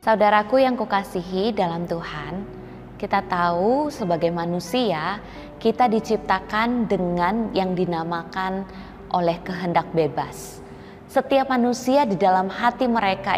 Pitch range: 180-245 Hz